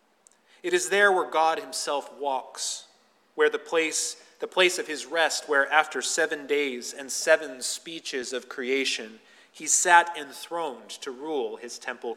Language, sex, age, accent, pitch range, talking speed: English, male, 30-49, American, 140-175 Hz, 155 wpm